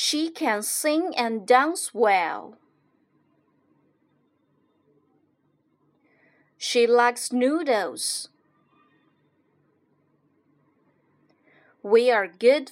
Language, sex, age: Chinese, female, 30-49